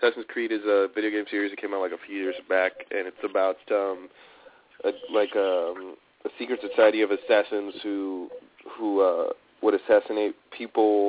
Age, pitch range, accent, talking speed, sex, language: 30-49, 100-130 Hz, American, 180 wpm, male, English